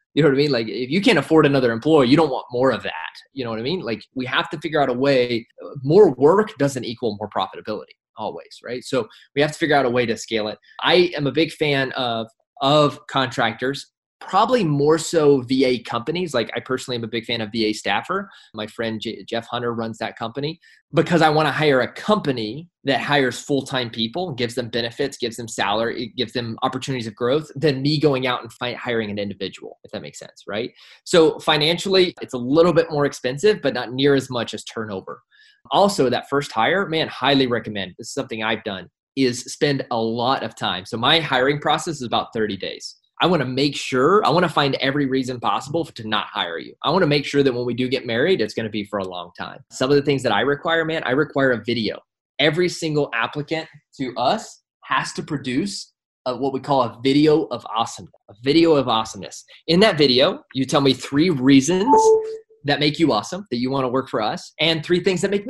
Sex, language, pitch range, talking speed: male, English, 120-155 Hz, 225 wpm